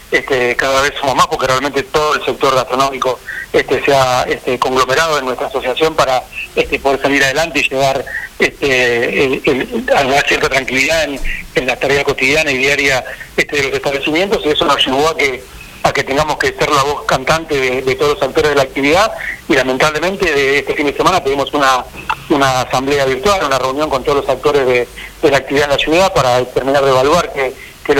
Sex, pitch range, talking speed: male, 130-150 Hz, 210 wpm